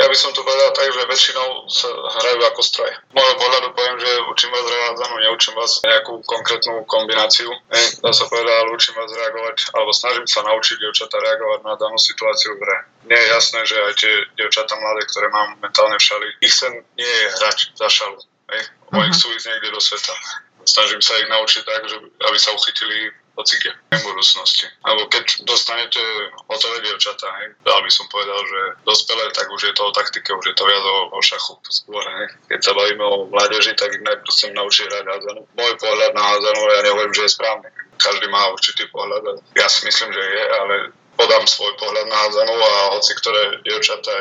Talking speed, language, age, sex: 195 wpm, Slovak, 20-39, male